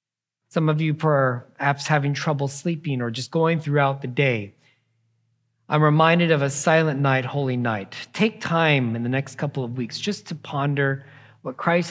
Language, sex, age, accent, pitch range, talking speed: English, male, 40-59, American, 130-165 Hz, 170 wpm